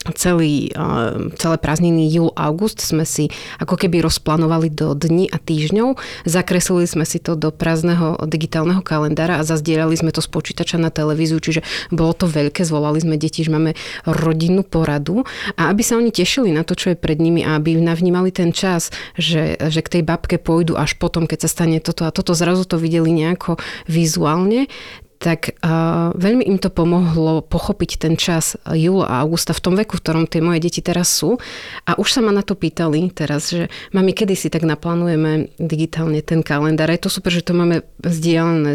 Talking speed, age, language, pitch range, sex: 185 wpm, 30-49, Slovak, 160-175 Hz, female